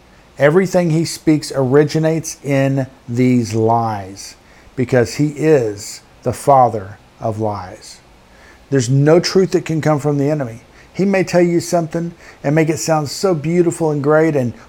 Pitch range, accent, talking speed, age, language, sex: 120-155 Hz, American, 150 wpm, 50-69, English, male